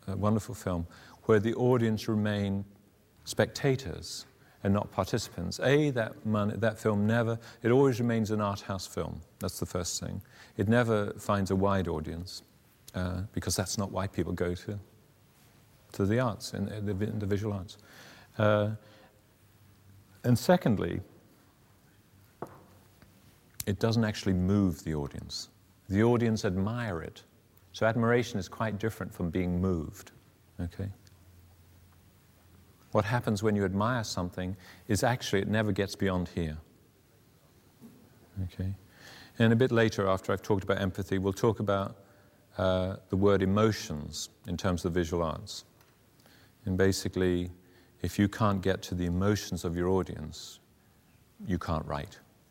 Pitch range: 90-110 Hz